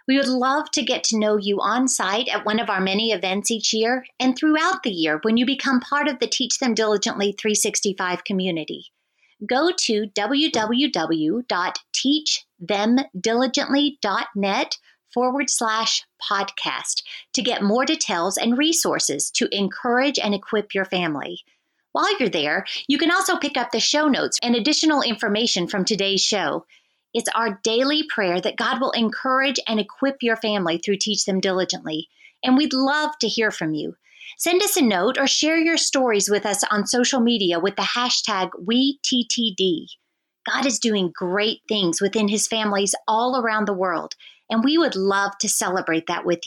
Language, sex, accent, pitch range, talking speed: English, female, American, 200-260 Hz, 165 wpm